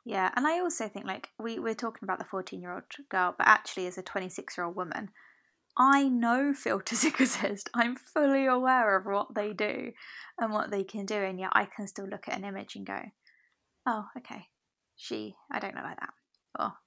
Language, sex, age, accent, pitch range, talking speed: English, female, 20-39, British, 190-245 Hz, 195 wpm